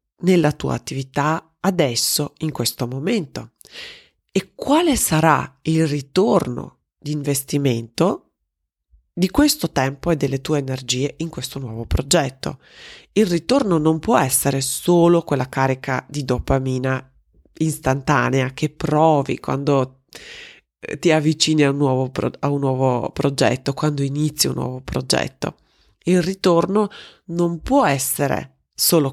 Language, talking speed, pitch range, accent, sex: Italian, 115 wpm, 130-170 Hz, native, female